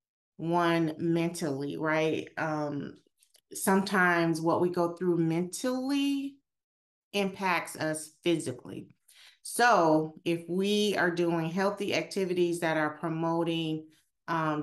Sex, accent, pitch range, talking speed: female, American, 160-200 Hz, 100 wpm